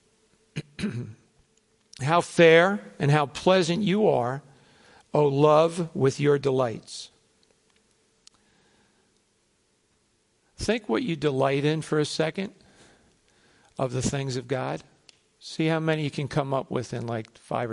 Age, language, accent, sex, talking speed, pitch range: 60-79, English, American, male, 120 wpm, 135-155 Hz